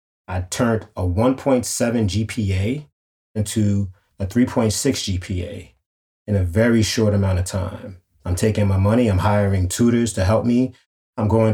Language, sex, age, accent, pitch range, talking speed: English, male, 30-49, American, 95-115 Hz, 145 wpm